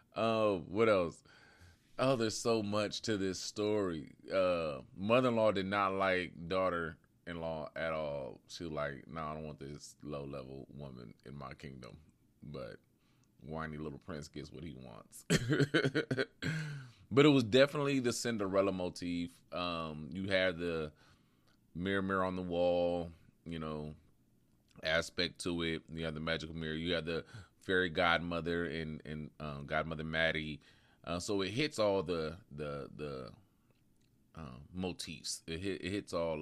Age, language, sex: 20-39, English, male